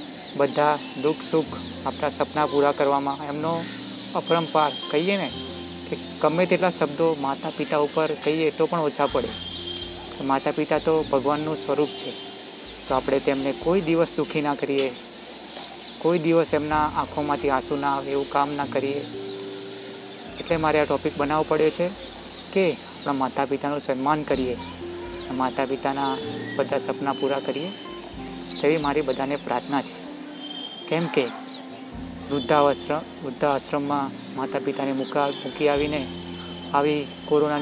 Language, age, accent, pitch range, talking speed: Gujarati, 30-49, native, 135-155 Hz, 125 wpm